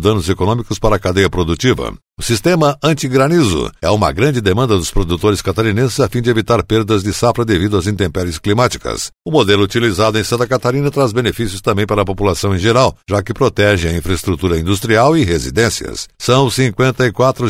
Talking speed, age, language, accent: 175 wpm, 60-79, Portuguese, Brazilian